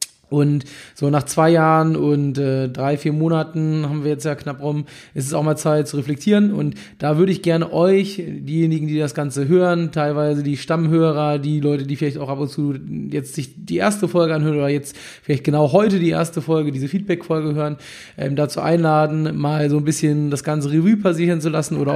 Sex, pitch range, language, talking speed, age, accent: male, 145-170 Hz, German, 210 wpm, 20-39, German